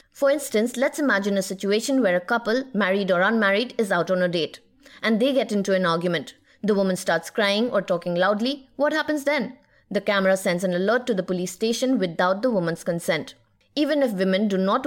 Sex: female